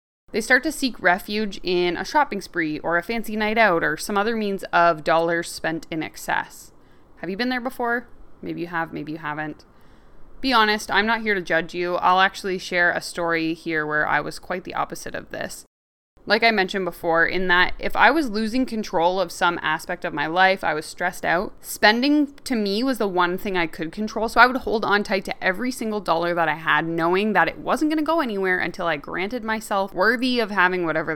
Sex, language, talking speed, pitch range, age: female, English, 220 wpm, 170-230 Hz, 20-39